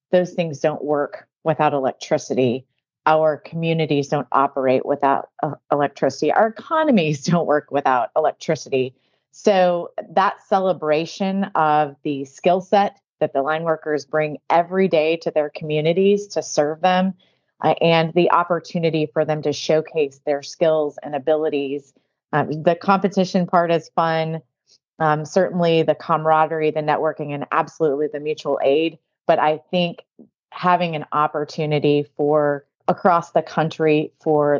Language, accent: English, American